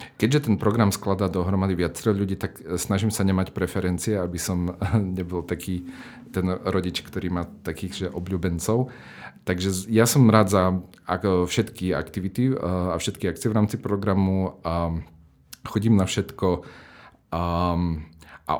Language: Slovak